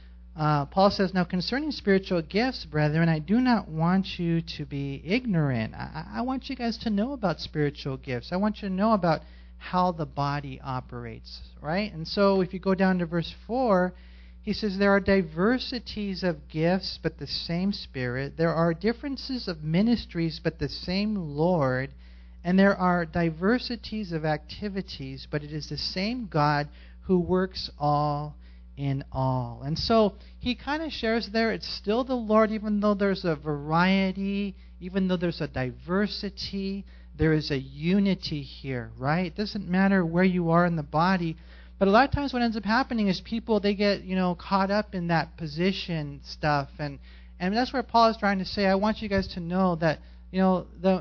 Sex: male